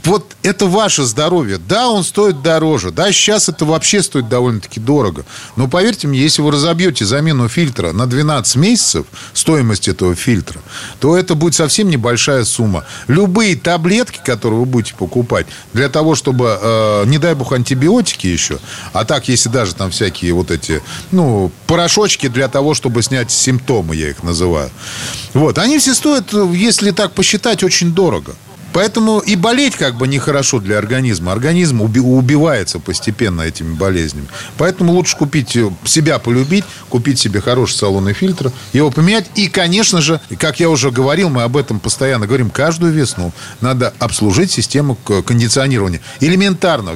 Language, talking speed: Russian, 155 wpm